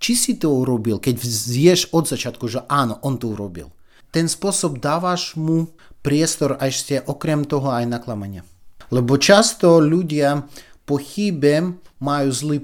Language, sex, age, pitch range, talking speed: Slovak, male, 30-49, 120-165 Hz, 145 wpm